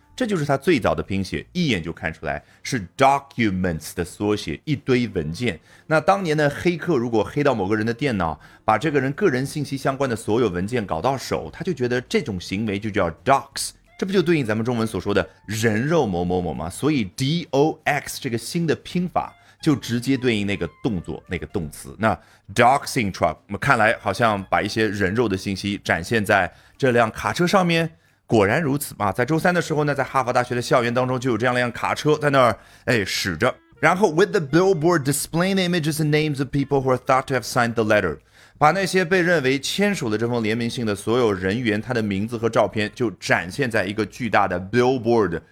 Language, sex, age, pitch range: Chinese, male, 30-49, 105-145 Hz